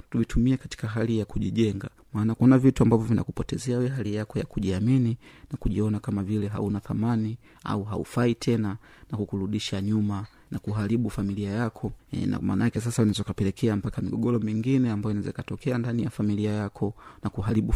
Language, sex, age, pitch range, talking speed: Swahili, male, 30-49, 105-120 Hz, 165 wpm